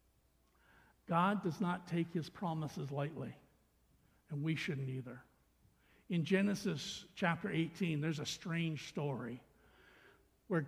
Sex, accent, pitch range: male, American, 150-195 Hz